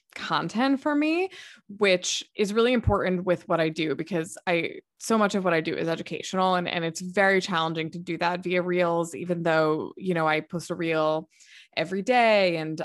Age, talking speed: 20-39, 195 wpm